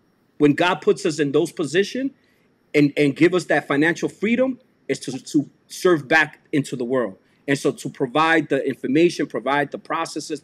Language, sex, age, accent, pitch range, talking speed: English, male, 40-59, American, 145-215 Hz, 180 wpm